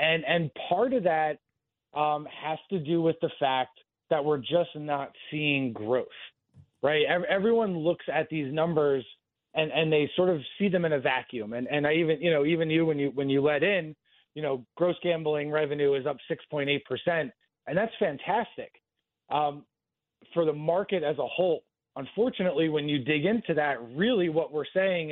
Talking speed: 190 wpm